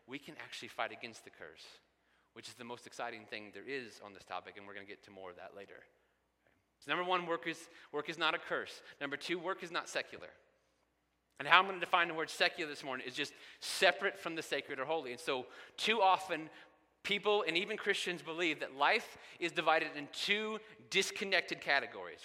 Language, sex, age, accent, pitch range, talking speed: English, male, 30-49, American, 135-175 Hz, 215 wpm